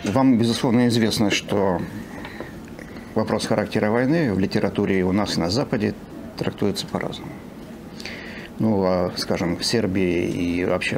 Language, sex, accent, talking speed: Russian, male, native, 120 wpm